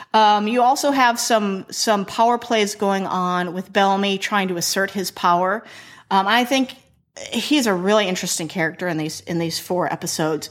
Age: 30-49